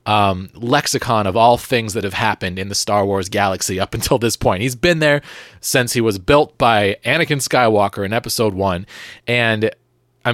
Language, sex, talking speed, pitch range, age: English, male, 180 wpm, 110-150 Hz, 30-49